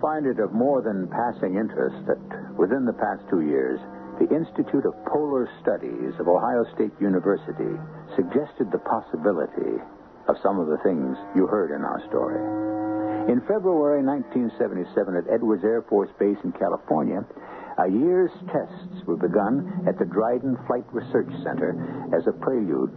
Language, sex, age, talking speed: English, male, 60-79, 155 wpm